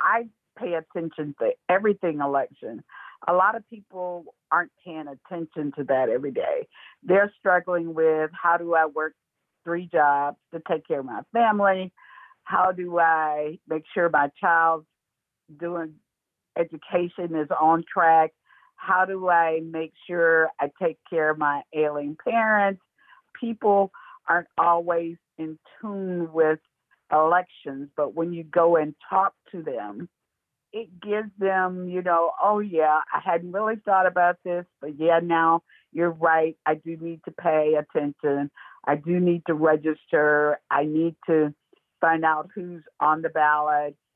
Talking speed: 150 wpm